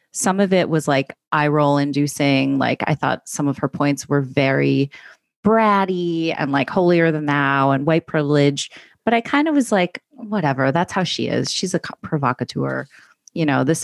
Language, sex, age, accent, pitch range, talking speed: English, female, 30-49, American, 145-200 Hz, 185 wpm